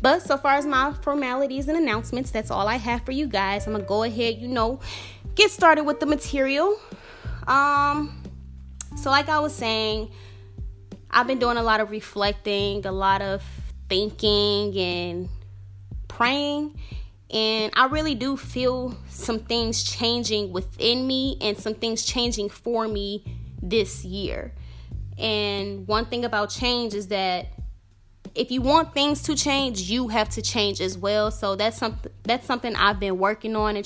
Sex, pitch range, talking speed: female, 185-235 Hz, 165 wpm